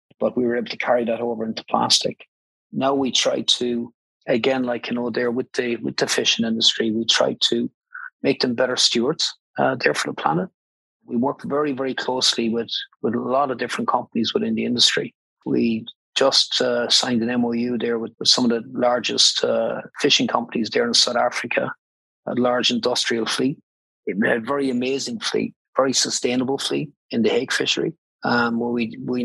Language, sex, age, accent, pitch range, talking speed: English, male, 40-59, Irish, 115-125 Hz, 190 wpm